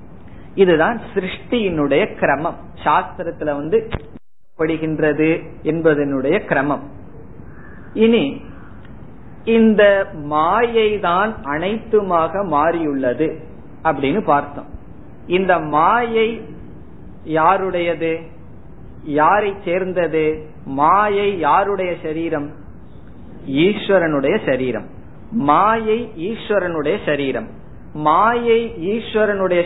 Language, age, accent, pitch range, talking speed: Tamil, 50-69, native, 150-195 Hz, 55 wpm